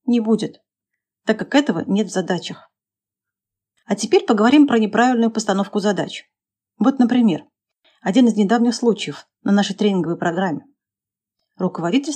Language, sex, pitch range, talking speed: Russian, female, 180-240 Hz, 130 wpm